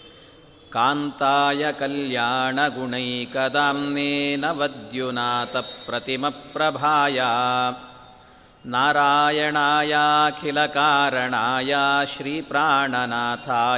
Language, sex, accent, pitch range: Kannada, male, native, 125-145 Hz